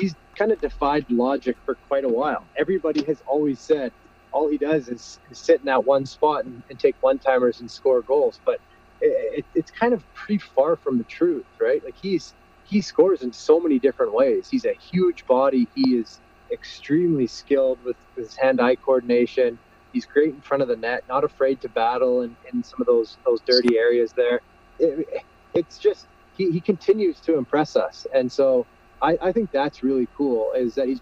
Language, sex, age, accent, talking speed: English, male, 30-49, American, 195 wpm